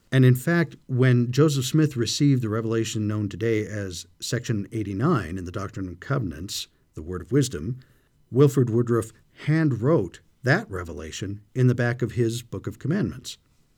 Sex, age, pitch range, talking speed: male, 50-69, 110-150 Hz, 155 wpm